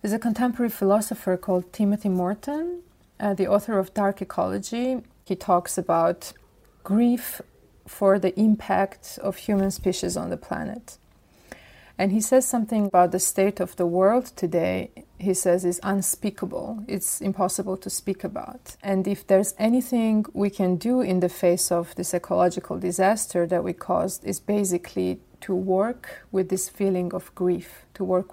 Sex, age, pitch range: female, 30-49, 180-205 Hz